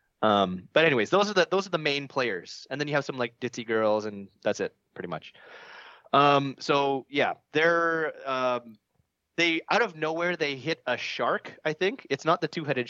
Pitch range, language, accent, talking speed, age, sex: 110-145 Hz, English, American, 205 wpm, 20-39, male